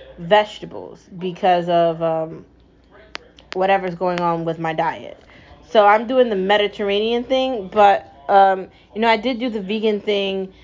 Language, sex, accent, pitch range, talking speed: English, female, American, 180-225 Hz, 145 wpm